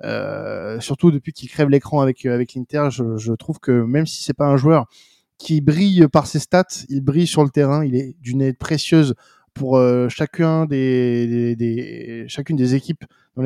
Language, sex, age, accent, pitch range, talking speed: French, male, 20-39, French, 125-150 Hz, 195 wpm